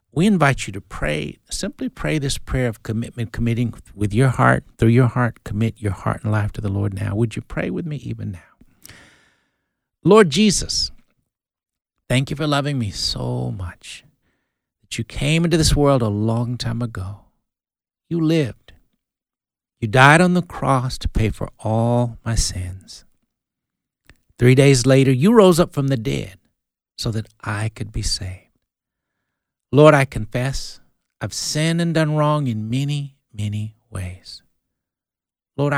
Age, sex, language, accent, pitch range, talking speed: 60-79, male, English, American, 105-140 Hz, 160 wpm